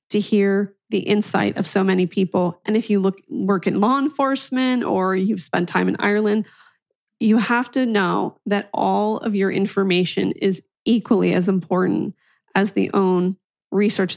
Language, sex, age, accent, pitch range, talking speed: English, female, 30-49, American, 180-230 Hz, 165 wpm